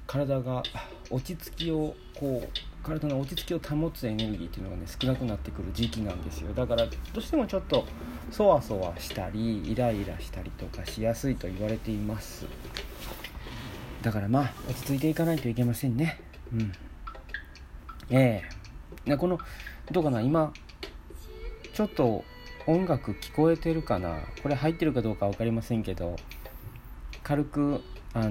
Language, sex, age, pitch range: Japanese, male, 40-59, 95-135 Hz